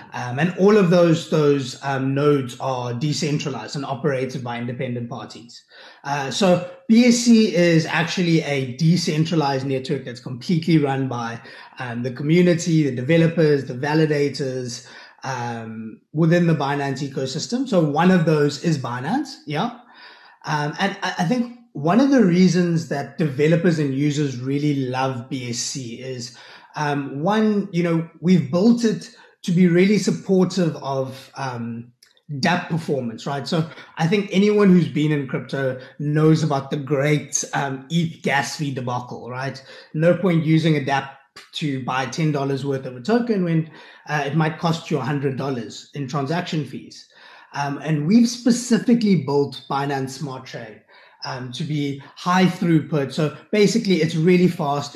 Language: English